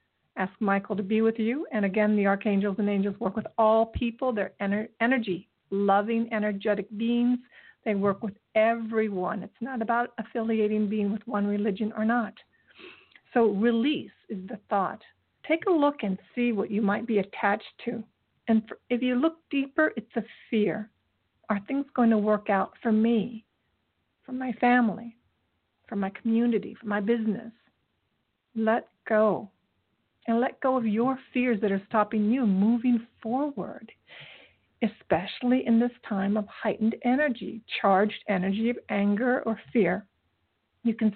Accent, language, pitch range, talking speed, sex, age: American, English, 210-240 Hz, 155 wpm, female, 50-69